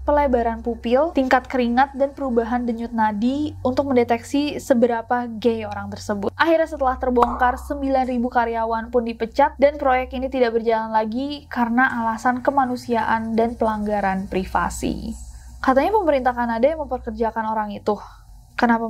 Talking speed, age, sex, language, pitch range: 130 wpm, 20-39, female, Indonesian, 225-260 Hz